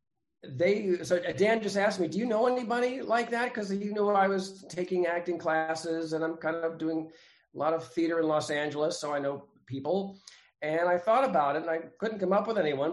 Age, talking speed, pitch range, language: 50-69, 225 wpm, 150-205 Hz, English